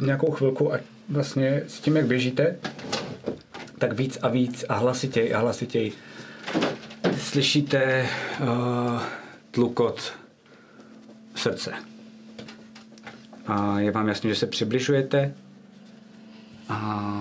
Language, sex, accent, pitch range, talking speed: Czech, male, native, 100-130 Hz, 100 wpm